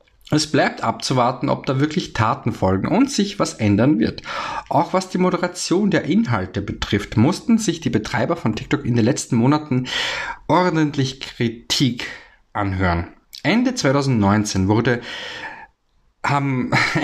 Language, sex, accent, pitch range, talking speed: German, male, German, 105-155 Hz, 130 wpm